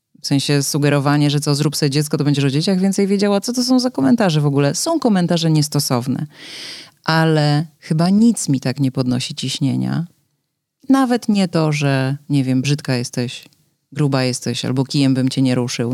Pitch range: 145-175 Hz